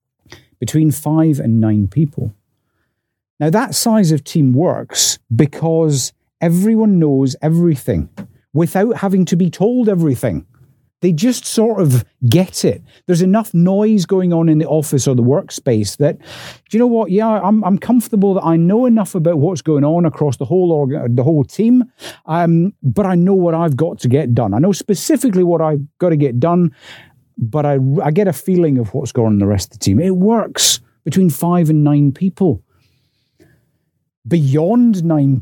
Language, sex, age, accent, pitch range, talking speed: English, male, 50-69, British, 135-200 Hz, 180 wpm